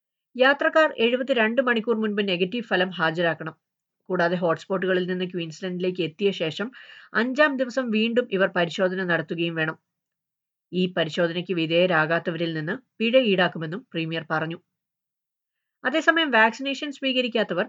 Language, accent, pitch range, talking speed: Malayalam, native, 170-230 Hz, 110 wpm